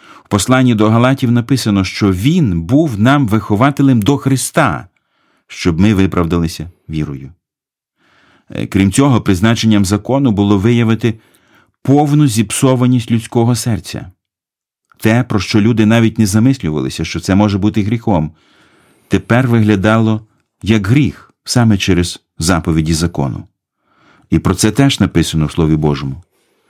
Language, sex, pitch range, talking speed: Ukrainian, male, 95-125 Hz, 120 wpm